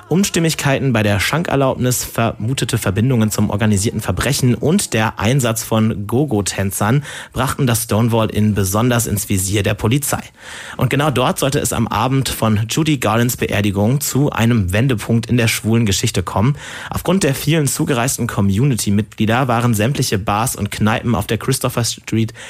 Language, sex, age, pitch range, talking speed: German, male, 30-49, 105-130 Hz, 150 wpm